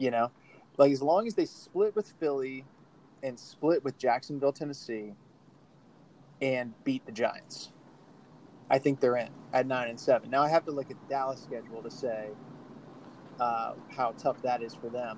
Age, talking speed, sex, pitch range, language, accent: 30-49, 175 wpm, male, 120-145 Hz, English, American